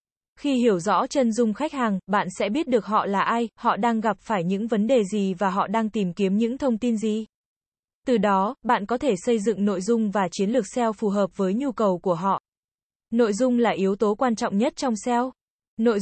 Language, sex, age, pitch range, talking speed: Vietnamese, female, 20-39, 200-245 Hz, 230 wpm